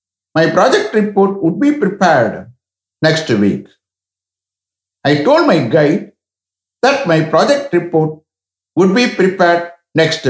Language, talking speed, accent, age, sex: English, 115 wpm, Indian, 60-79, male